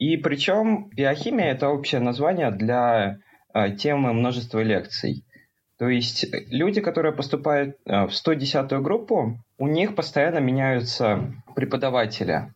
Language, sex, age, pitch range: Russian, male, 20-39, 115-160 Hz